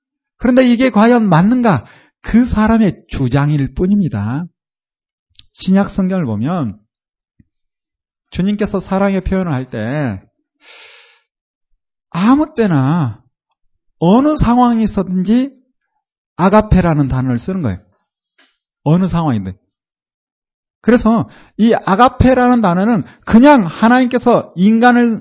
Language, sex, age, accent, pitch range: Korean, male, 40-59, native, 190-255 Hz